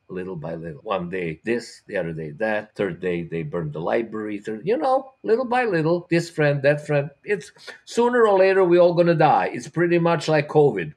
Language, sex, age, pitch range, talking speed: English, male, 50-69, 125-165 Hz, 215 wpm